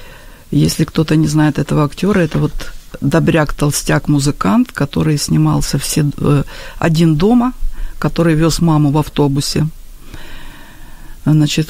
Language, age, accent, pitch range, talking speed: Ukrainian, 50-69, native, 150-185 Hz, 105 wpm